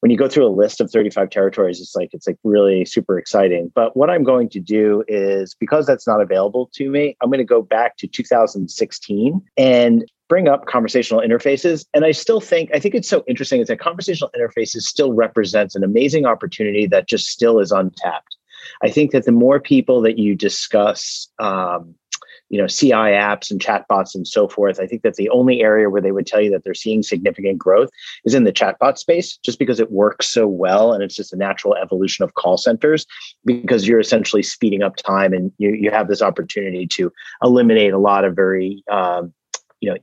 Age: 30-49